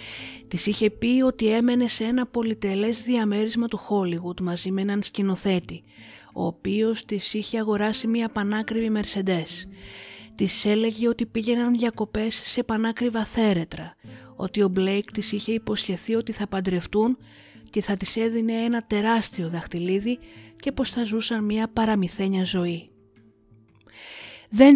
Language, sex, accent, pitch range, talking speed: Greek, female, native, 180-225 Hz, 135 wpm